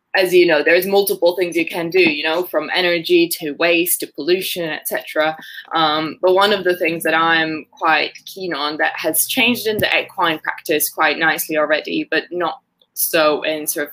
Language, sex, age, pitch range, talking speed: English, female, 20-39, 165-200 Hz, 195 wpm